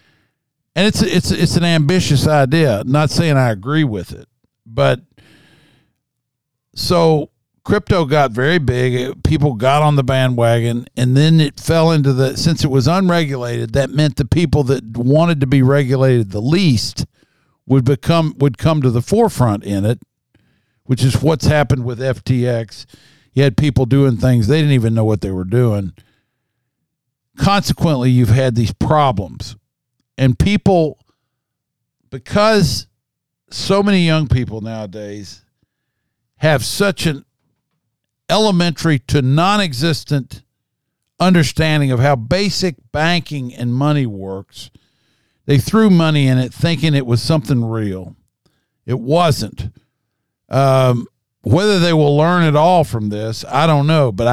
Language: English